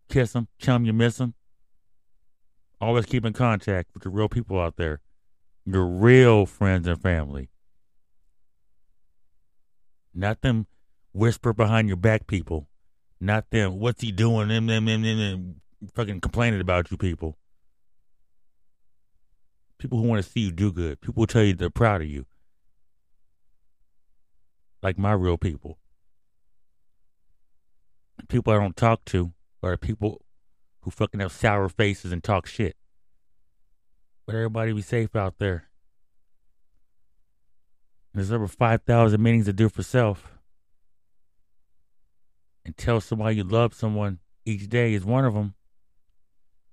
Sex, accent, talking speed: male, American, 130 wpm